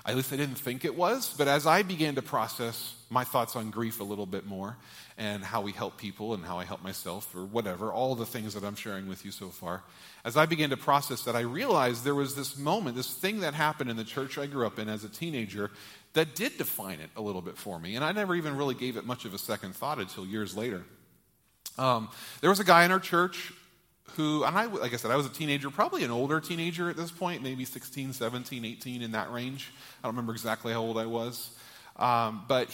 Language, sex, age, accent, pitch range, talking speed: English, male, 40-59, American, 110-145 Hz, 245 wpm